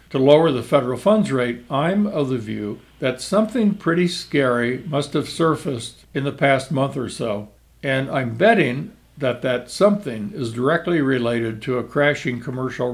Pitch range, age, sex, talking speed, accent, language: 130-175 Hz, 60-79, male, 165 wpm, American, English